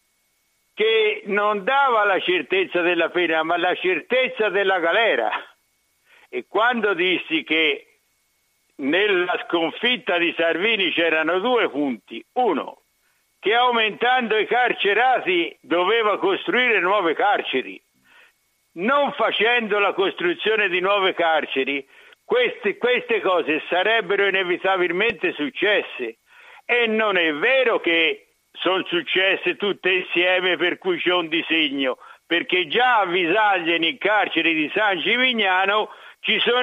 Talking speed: 110 wpm